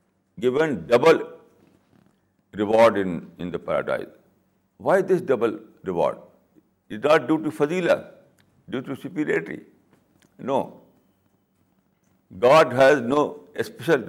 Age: 60-79